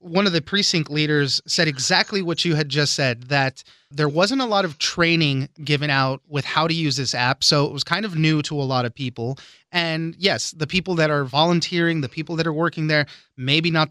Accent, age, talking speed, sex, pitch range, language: American, 30-49, 230 wpm, male, 140-170 Hz, English